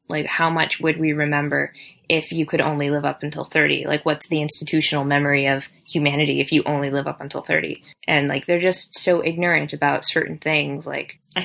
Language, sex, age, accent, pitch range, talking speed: English, female, 20-39, American, 150-175 Hz, 205 wpm